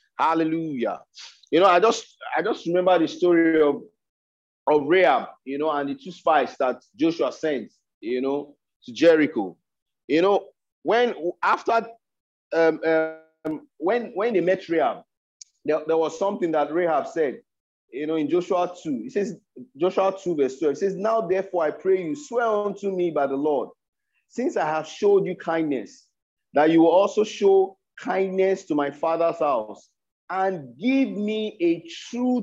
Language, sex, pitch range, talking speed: English, male, 155-210 Hz, 165 wpm